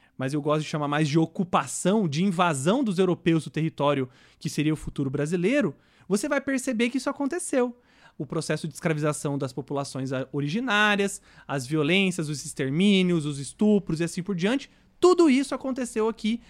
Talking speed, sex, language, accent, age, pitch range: 165 wpm, male, English, Brazilian, 30-49, 155-210 Hz